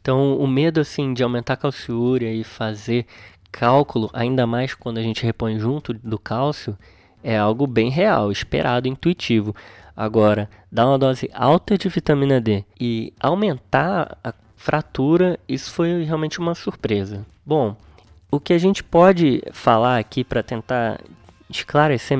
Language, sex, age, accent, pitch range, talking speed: Portuguese, male, 20-39, Brazilian, 110-145 Hz, 145 wpm